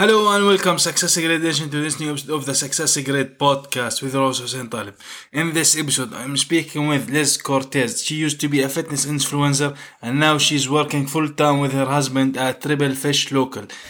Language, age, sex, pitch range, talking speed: English, 20-39, male, 140-150 Hz, 200 wpm